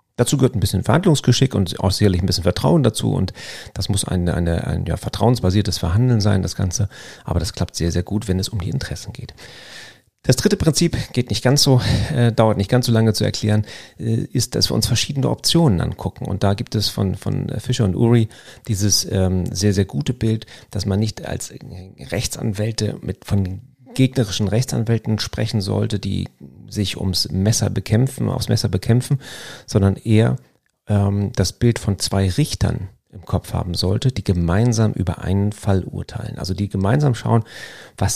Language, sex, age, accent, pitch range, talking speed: German, male, 40-59, German, 95-120 Hz, 185 wpm